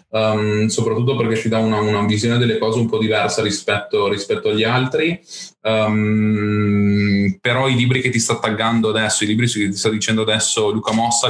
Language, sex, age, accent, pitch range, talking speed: Italian, male, 20-39, native, 100-115 Hz, 175 wpm